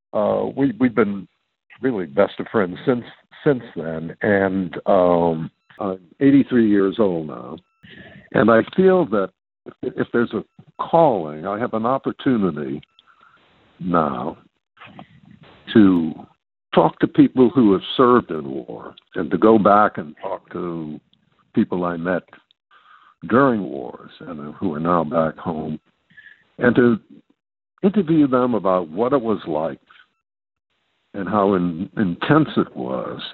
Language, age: English, 60-79